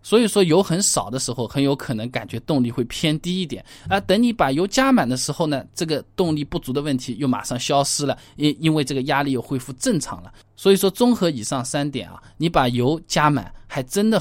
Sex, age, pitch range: male, 20-39, 130-200 Hz